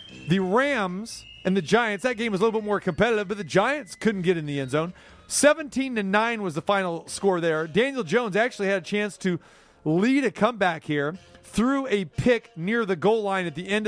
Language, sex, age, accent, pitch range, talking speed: English, male, 30-49, American, 160-205 Hz, 215 wpm